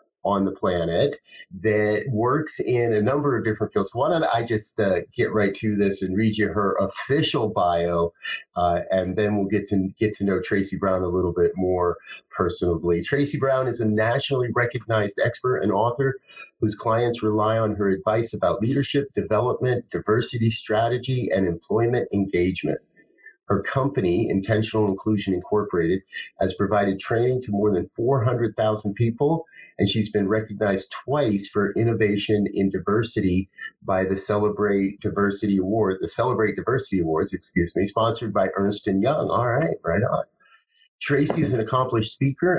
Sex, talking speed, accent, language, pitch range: male, 160 wpm, American, English, 100-125 Hz